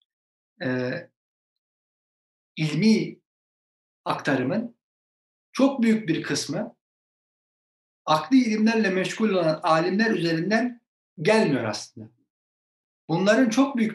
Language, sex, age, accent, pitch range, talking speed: Turkish, male, 60-79, native, 145-210 Hz, 75 wpm